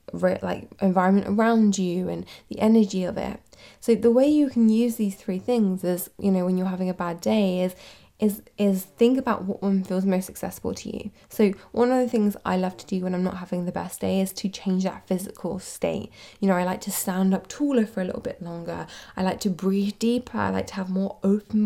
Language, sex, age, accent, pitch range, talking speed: English, female, 10-29, British, 185-215 Hz, 235 wpm